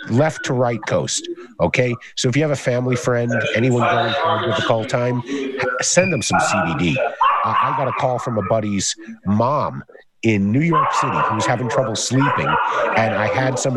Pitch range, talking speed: 105-135 Hz, 190 wpm